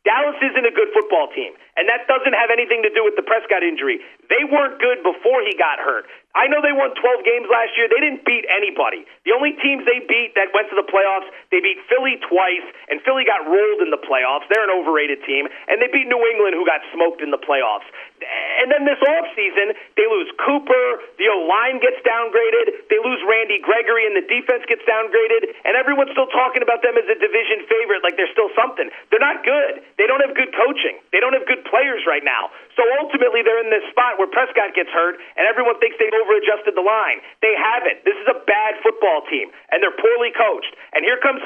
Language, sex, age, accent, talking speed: English, male, 40-59, American, 220 wpm